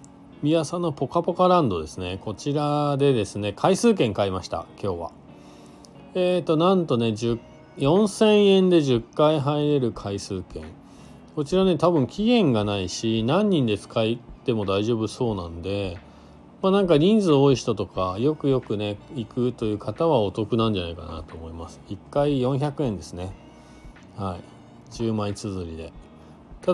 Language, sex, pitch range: Japanese, male, 100-150 Hz